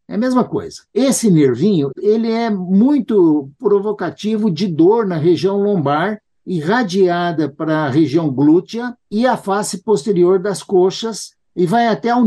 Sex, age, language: male, 60-79, Portuguese